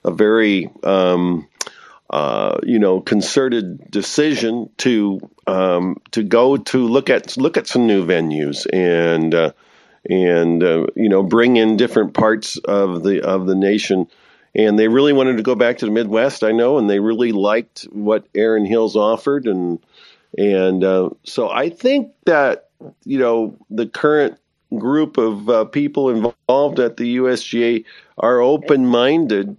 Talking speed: 155 wpm